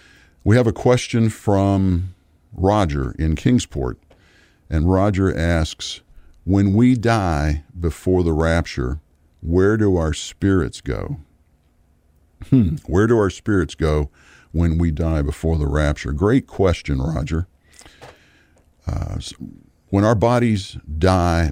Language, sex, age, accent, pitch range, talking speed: English, male, 50-69, American, 80-95 Hz, 115 wpm